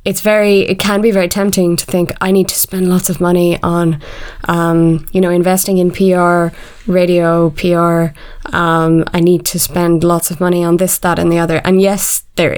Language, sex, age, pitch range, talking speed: English, female, 20-39, 170-190 Hz, 200 wpm